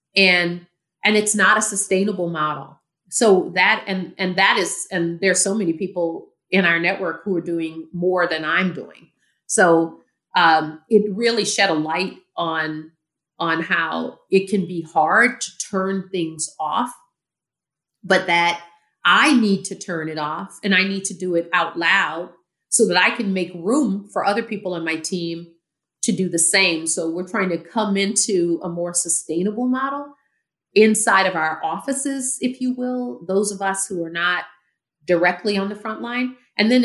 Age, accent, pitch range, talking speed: 40-59, American, 165-205 Hz, 175 wpm